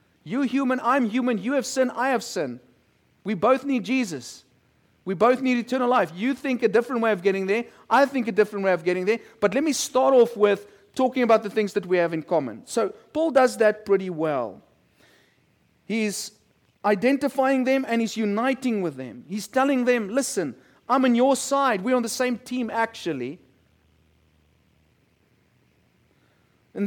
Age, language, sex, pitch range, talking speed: 40-59, English, male, 205-260 Hz, 175 wpm